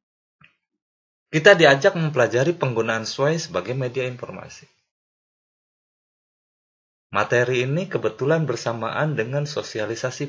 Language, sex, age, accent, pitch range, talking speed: Indonesian, male, 30-49, native, 130-185 Hz, 80 wpm